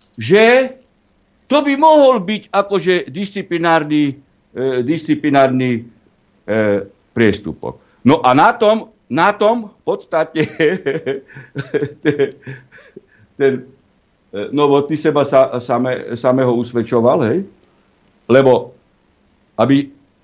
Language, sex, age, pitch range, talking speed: Slovak, male, 60-79, 120-160 Hz, 85 wpm